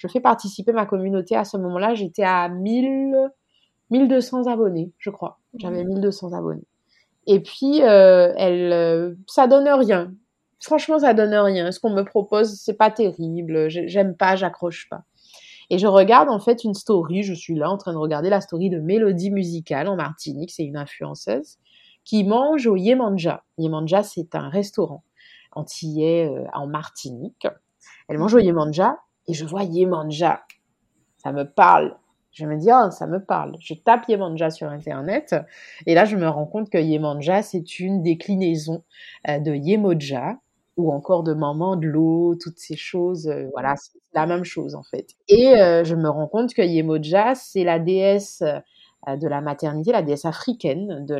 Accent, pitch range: French, 160-215 Hz